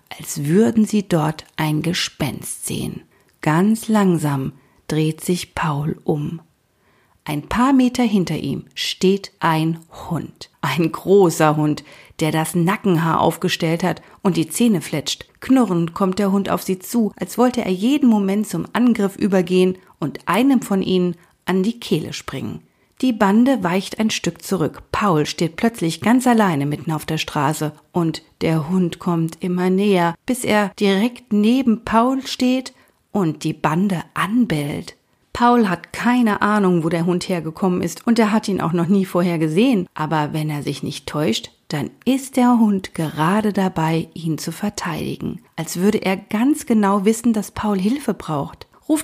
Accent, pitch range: German, 165-220 Hz